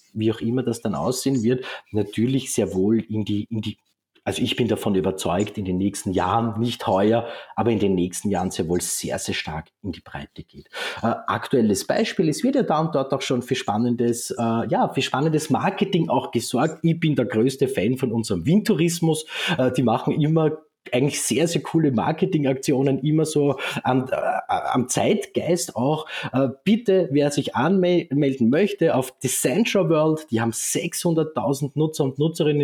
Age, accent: 30-49, Austrian